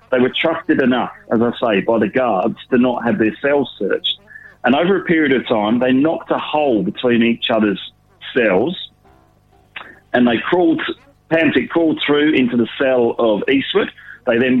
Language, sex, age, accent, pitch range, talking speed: English, male, 40-59, British, 115-145 Hz, 175 wpm